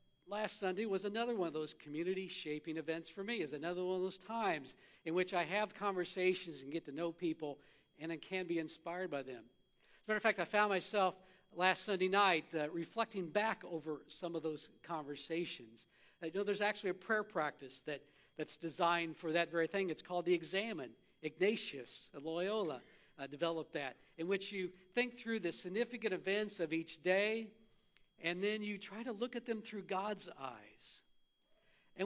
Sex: male